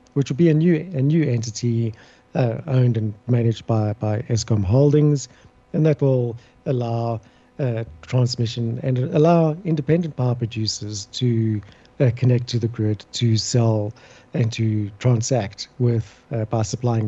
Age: 50-69